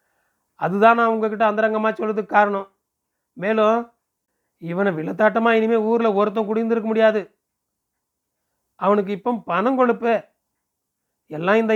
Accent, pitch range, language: native, 195-220 Hz, Tamil